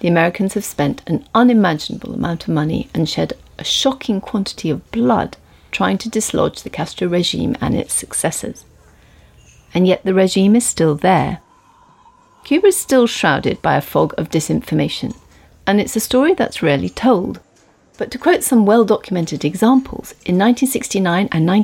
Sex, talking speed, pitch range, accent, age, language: female, 155 wpm, 190-245 Hz, British, 40-59, English